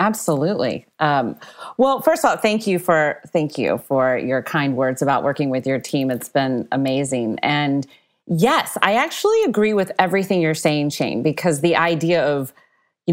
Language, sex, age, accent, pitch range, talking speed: English, female, 30-49, American, 145-185 Hz, 175 wpm